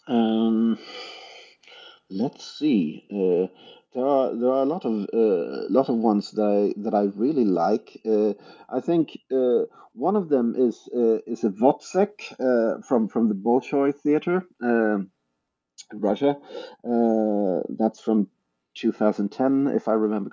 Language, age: English, 50-69